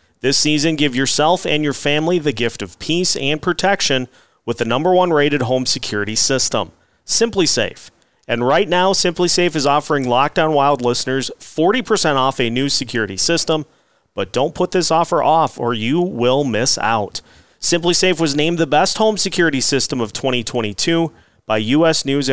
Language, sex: English, male